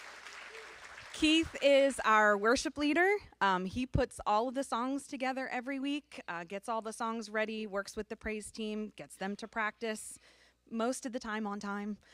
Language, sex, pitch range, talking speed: English, female, 185-250 Hz, 180 wpm